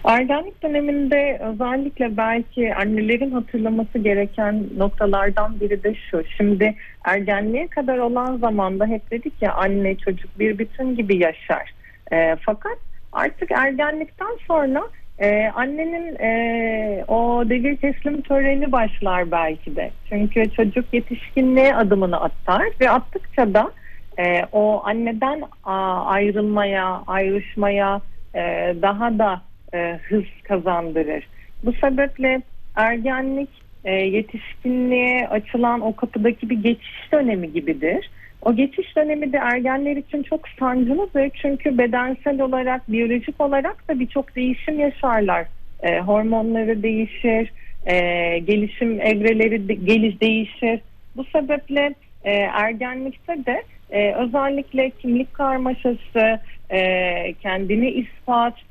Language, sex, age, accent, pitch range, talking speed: Turkish, female, 40-59, native, 205-265 Hz, 110 wpm